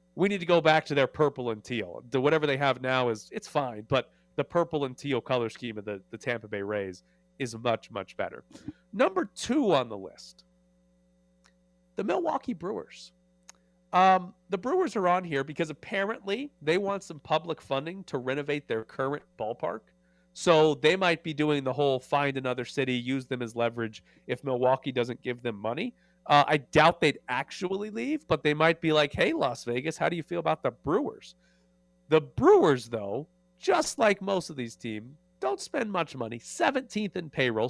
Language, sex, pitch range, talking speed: English, male, 120-180 Hz, 185 wpm